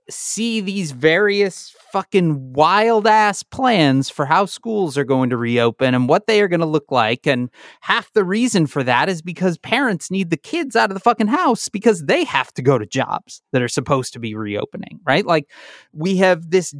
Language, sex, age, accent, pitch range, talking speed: English, male, 30-49, American, 145-210 Hz, 205 wpm